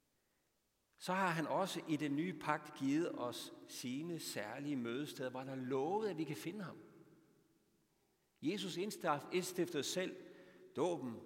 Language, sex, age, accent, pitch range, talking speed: Danish, male, 60-79, native, 135-200 Hz, 140 wpm